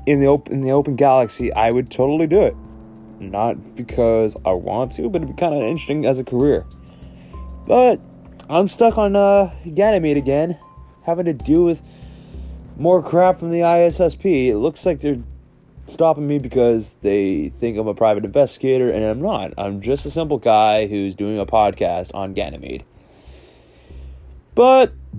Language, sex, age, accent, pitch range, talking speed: English, male, 20-39, American, 100-145 Hz, 165 wpm